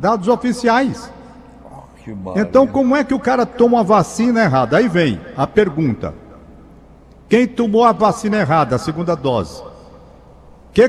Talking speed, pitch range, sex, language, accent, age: 145 wpm, 170-230 Hz, male, Portuguese, Brazilian, 60-79